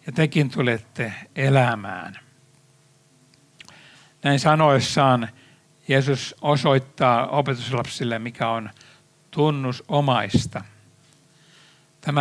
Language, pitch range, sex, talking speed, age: Finnish, 125-150 Hz, male, 60 wpm, 60-79